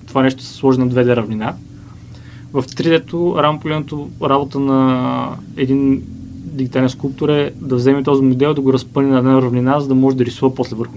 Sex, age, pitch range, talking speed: male, 20-39, 125-145 Hz, 175 wpm